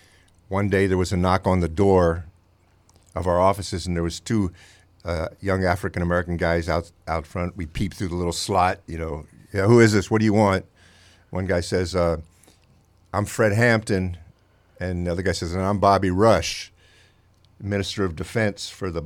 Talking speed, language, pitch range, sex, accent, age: 190 wpm, English, 90-100 Hz, male, American, 50-69